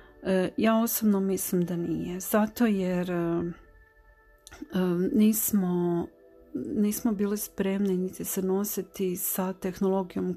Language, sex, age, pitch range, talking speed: Croatian, female, 40-59, 180-205 Hz, 95 wpm